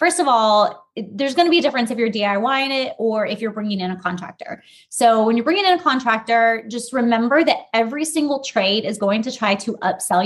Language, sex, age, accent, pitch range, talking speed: English, female, 20-39, American, 205-245 Hz, 230 wpm